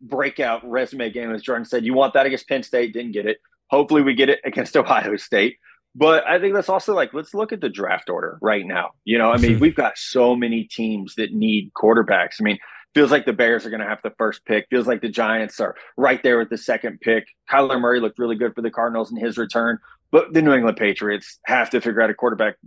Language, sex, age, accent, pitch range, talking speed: English, male, 30-49, American, 110-140 Hz, 245 wpm